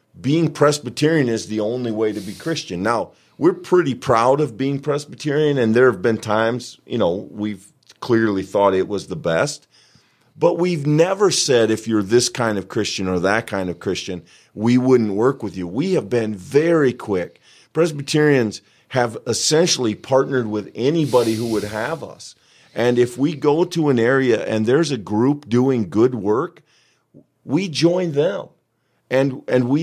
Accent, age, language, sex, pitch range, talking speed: American, 40-59, English, male, 105-145 Hz, 170 wpm